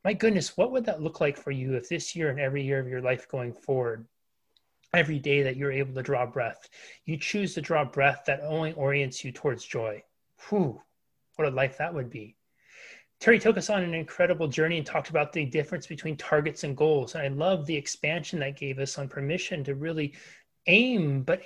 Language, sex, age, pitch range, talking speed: English, male, 30-49, 145-195 Hz, 215 wpm